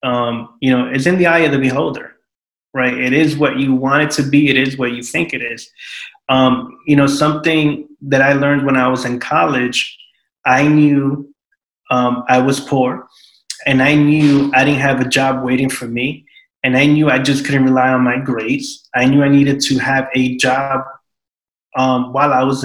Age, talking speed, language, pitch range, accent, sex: 20-39, 205 wpm, English, 130-155 Hz, American, male